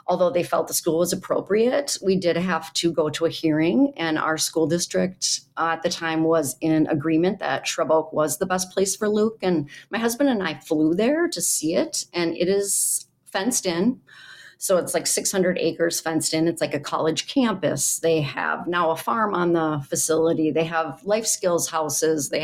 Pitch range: 160-185 Hz